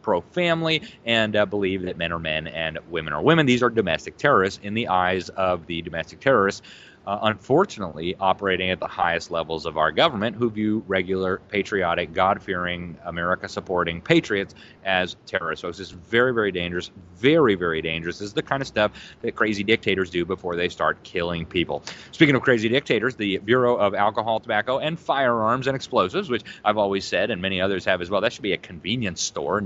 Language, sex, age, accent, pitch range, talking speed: English, male, 30-49, American, 95-120 Hz, 195 wpm